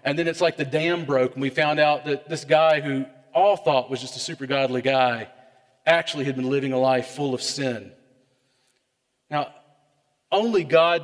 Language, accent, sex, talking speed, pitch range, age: English, American, male, 190 wpm, 130-170 Hz, 40-59